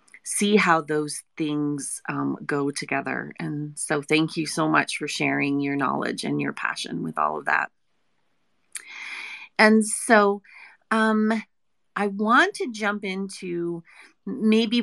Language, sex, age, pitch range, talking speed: English, female, 30-49, 165-205 Hz, 135 wpm